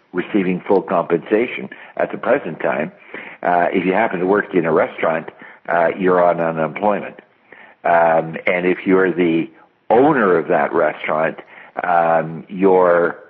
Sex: male